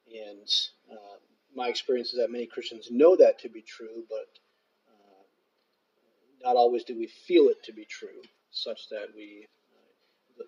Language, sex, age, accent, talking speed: English, male, 40-59, American, 160 wpm